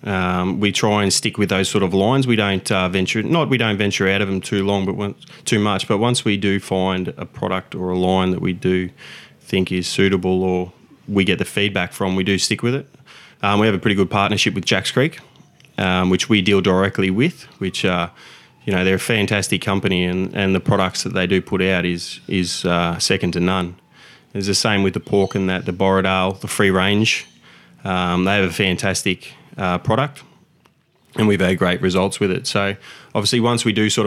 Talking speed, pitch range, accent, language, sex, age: 220 wpm, 95-105 Hz, Australian, English, male, 20-39